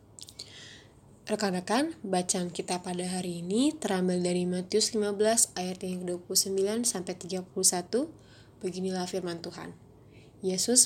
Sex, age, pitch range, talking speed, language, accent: female, 20-39, 175-215 Hz, 100 wpm, Indonesian, native